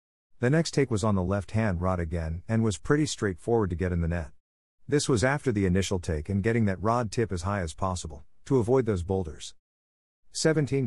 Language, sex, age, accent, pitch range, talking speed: English, male, 50-69, American, 85-115 Hz, 210 wpm